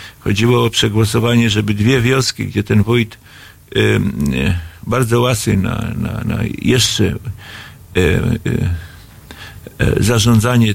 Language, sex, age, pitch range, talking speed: Polish, male, 50-69, 105-125 Hz, 115 wpm